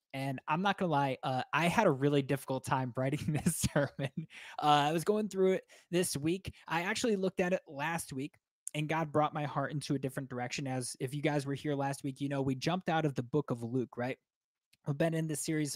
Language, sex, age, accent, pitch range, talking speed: English, male, 20-39, American, 130-160 Hz, 240 wpm